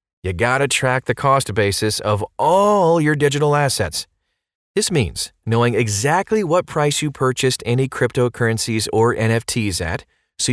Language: English